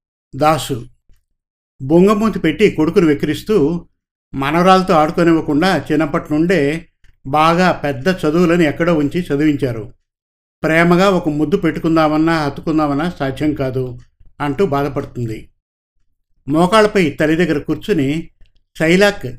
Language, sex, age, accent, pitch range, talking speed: Telugu, male, 60-79, native, 135-170 Hz, 90 wpm